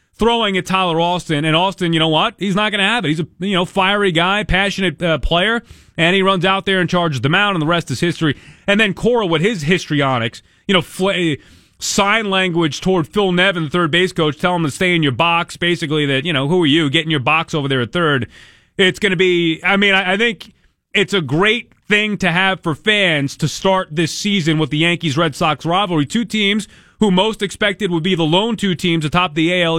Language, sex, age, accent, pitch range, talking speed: English, male, 30-49, American, 150-190 Hz, 240 wpm